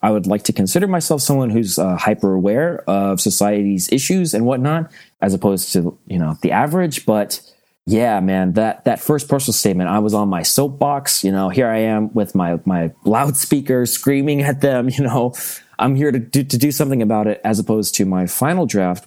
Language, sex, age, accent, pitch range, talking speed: English, male, 30-49, American, 95-125 Hz, 205 wpm